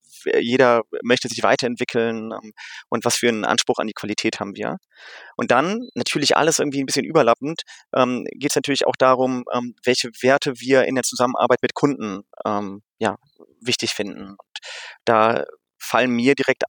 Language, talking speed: German, 155 wpm